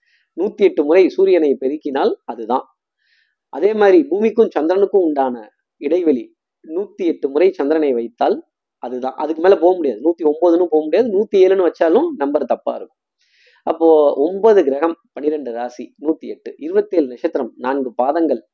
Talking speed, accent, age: 140 wpm, native, 20-39